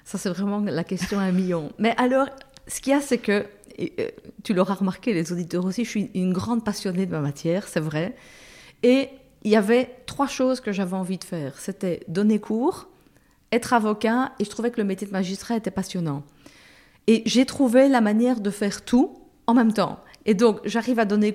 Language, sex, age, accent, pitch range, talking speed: French, female, 40-59, French, 195-240 Hz, 210 wpm